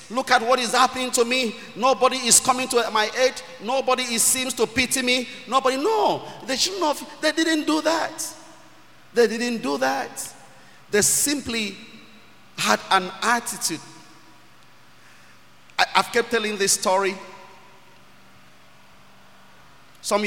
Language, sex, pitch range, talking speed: English, male, 165-235 Hz, 125 wpm